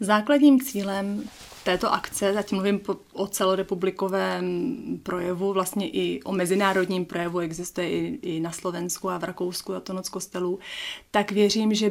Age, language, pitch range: 30-49, Czech, 175-200 Hz